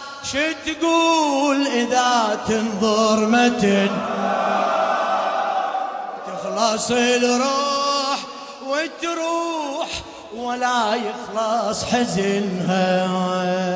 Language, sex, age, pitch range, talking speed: Arabic, male, 30-49, 200-250 Hz, 45 wpm